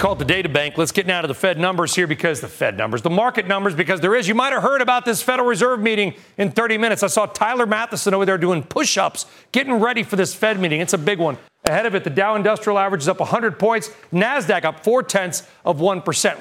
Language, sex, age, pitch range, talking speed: English, male, 40-59, 165-215 Hz, 250 wpm